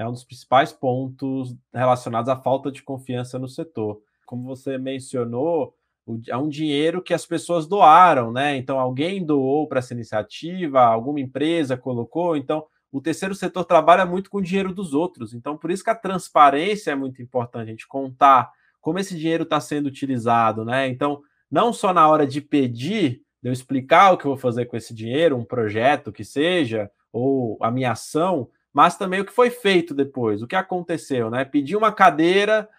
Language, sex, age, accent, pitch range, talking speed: Portuguese, male, 20-39, Brazilian, 125-170 Hz, 185 wpm